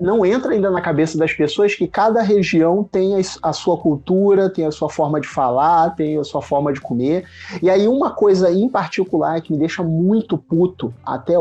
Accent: Brazilian